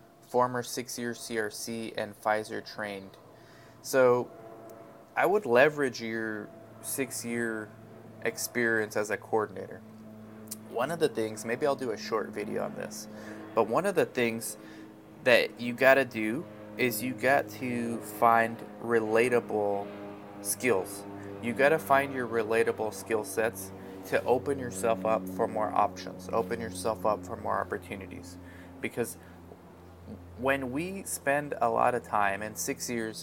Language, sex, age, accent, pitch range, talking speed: English, male, 20-39, American, 105-120 Hz, 140 wpm